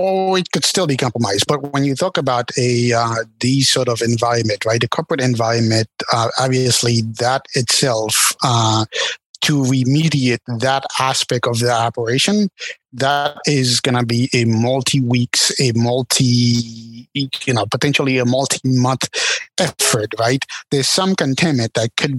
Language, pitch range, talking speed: English, 120-140 Hz, 150 wpm